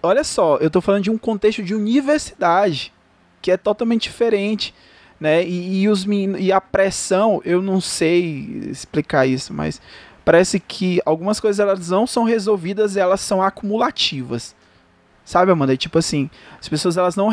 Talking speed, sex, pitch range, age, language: 150 wpm, male, 150-195 Hz, 20-39, Portuguese